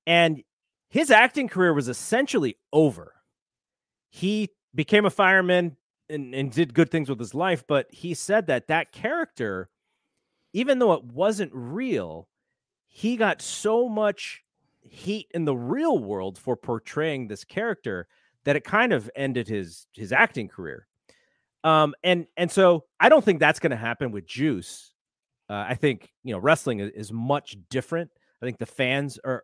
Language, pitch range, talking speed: English, 115-175 Hz, 160 wpm